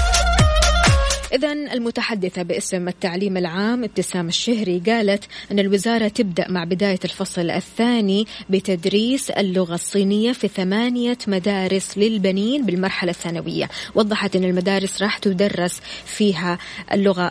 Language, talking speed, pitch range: Arabic, 110 wpm, 185-225 Hz